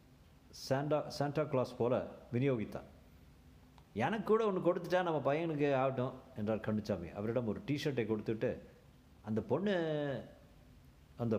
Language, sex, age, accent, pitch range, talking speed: Tamil, male, 50-69, native, 110-150 Hz, 110 wpm